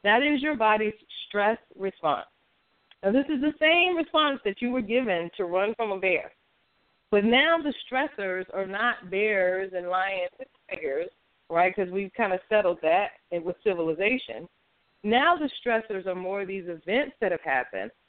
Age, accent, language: 40-59, American, English